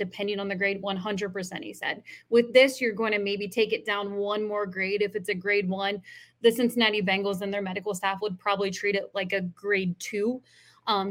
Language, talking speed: English, 220 wpm